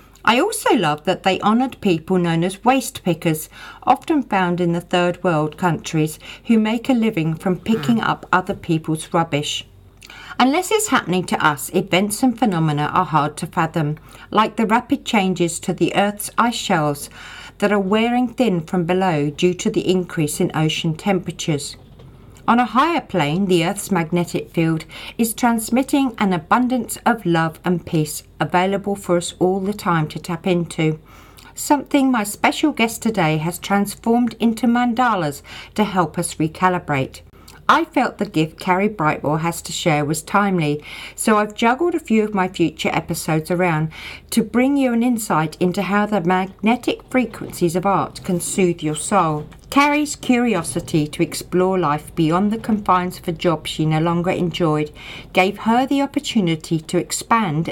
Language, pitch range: English, 160-220 Hz